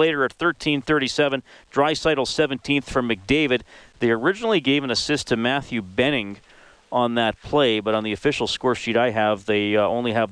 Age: 40-59